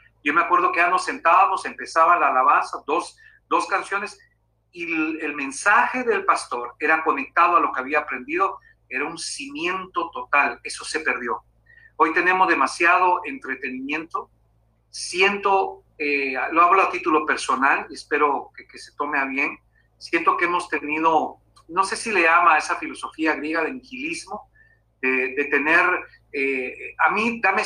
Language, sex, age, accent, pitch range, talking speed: Spanish, male, 50-69, Mexican, 140-230 Hz, 155 wpm